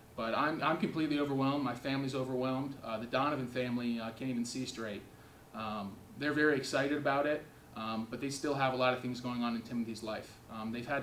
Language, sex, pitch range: English, male, 115-135 Hz